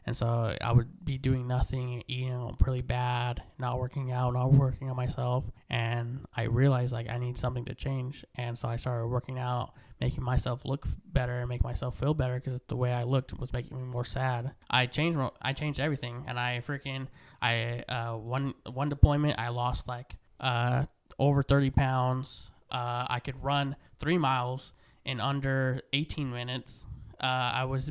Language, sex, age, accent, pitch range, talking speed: English, male, 20-39, American, 125-135 Hz, 180 wpm